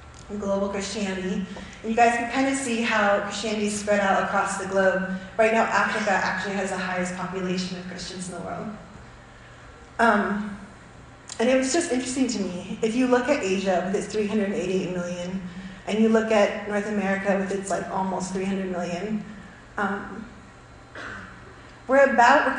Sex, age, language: female, 30-49, English